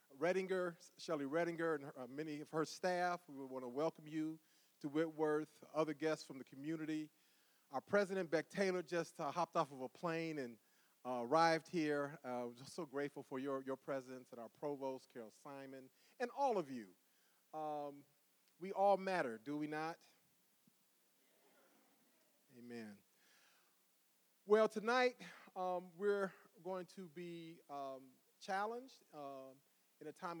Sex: male